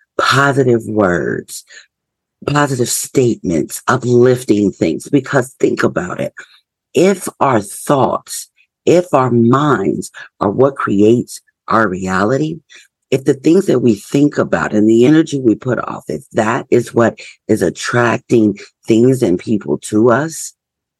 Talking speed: 130 wpm